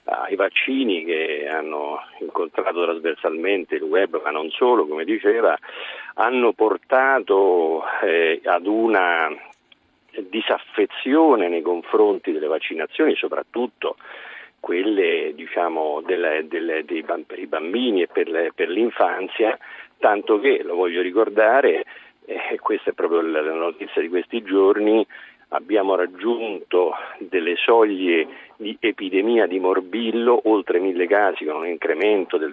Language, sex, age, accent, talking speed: Italian, male, 50-69, native, 115 wpm